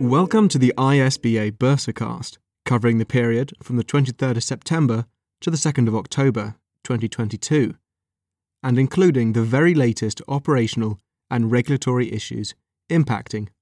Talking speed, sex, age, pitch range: 130 wpm, male, 30-49, 110-135 Hz